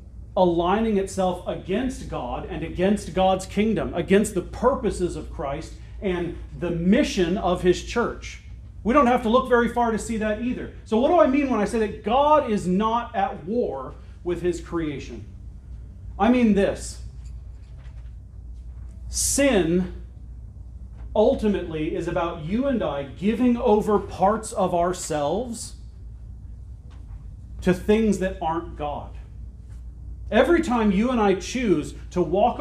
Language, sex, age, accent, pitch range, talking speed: English, male, 40-59, American, 175-225 Hz, 140 wpm